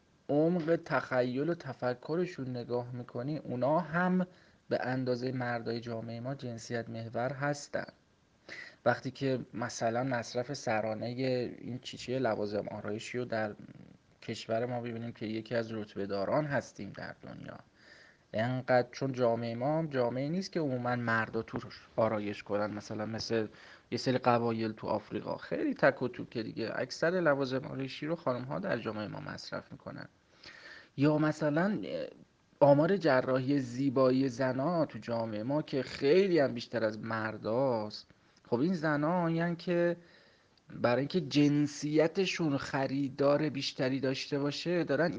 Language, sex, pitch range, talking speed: Persian, male, 120-155 Hz, 135 wpm